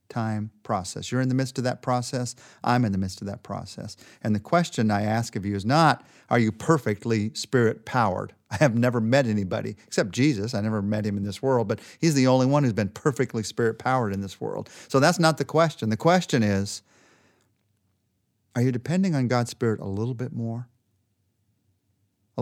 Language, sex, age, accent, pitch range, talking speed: English, male, 40-59, American, 105-135 Hz, 205 wpm